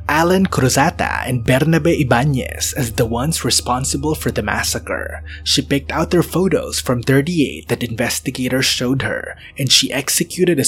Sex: male